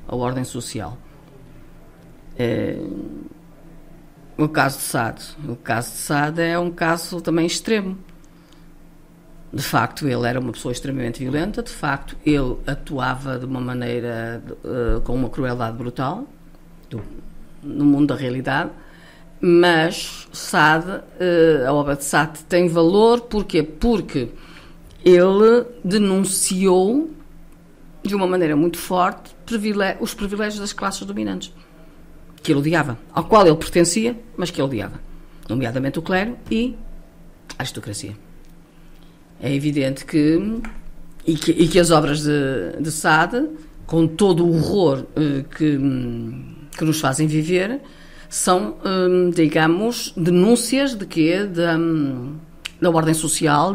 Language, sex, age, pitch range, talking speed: Portuguese, female, 50-69, 140-180 Hz, 125 wpm